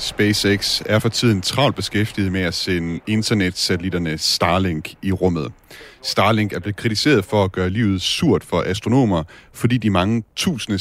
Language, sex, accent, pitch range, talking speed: Danish, male, native, 95-120 Hz, 155 wpm